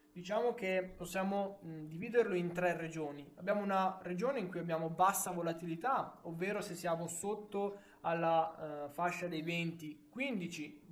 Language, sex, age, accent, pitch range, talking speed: Italian, male, 20-39, native, 160-185 Hz, 130 wpm